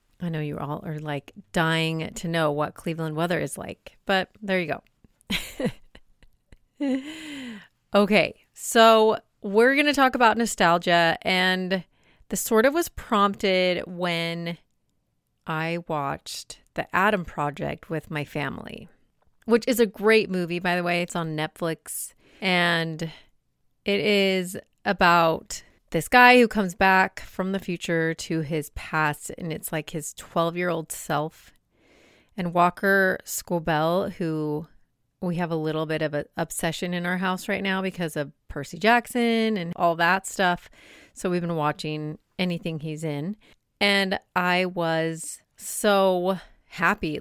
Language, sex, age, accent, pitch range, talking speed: English, female, 30-49, American, 160-200 Hz, 140 wpm